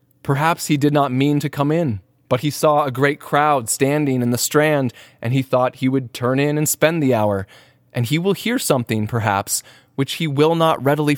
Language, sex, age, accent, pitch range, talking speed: English, male, 20-39, American, 120-150 Hz, 215 wpm